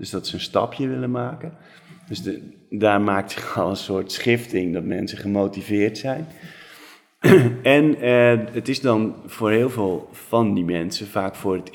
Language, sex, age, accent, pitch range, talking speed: Dutch, male, 30-49, Dutch, 95-120 Hz, 170 wpm